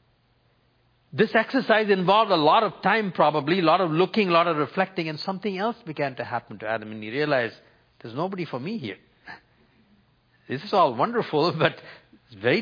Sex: male